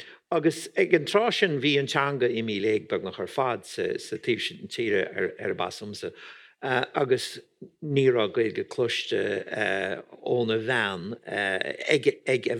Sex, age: male, 60-79